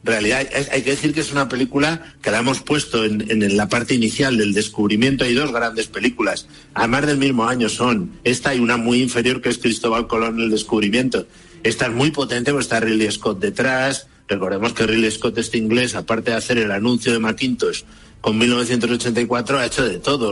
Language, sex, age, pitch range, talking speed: Spanish, male, 60-79, 115-150 Hz, 205 wpm